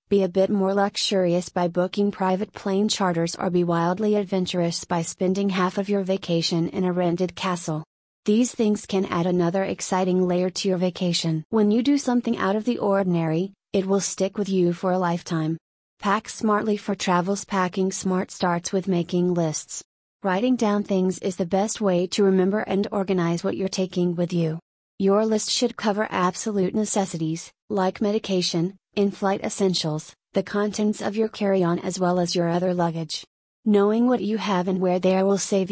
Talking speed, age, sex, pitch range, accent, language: 180 wpm, 30-49, female, 175-205 Hz, American, English